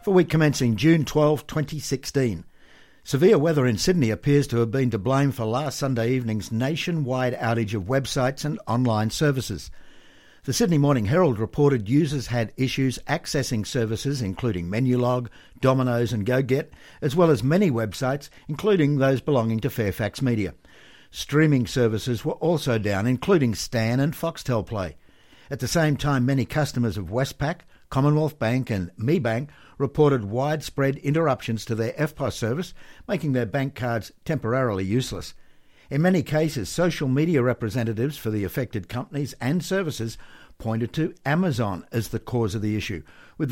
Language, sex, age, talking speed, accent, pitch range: English, male, 60-79, 150 wpm, Australian, 115-145 Hz